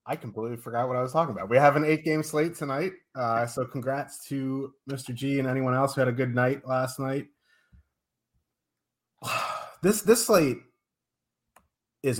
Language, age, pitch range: English, 30-49, 120-155 Hz